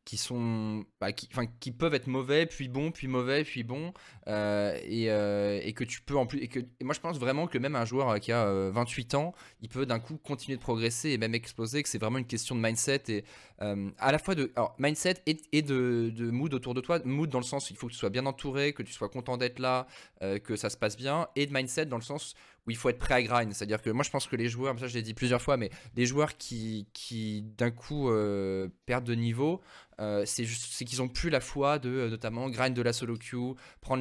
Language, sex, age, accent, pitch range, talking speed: French, male, 20-39, French, 110-135 Hz, 270 wpm